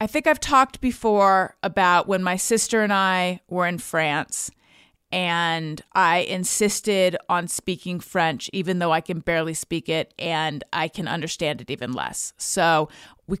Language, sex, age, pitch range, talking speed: English, female, 30-49, 170-215 Hz, 160 wpm